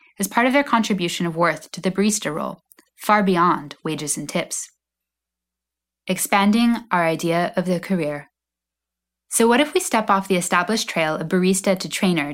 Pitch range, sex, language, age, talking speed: 170-220 Hz, female, English, 10-29, 170 wpm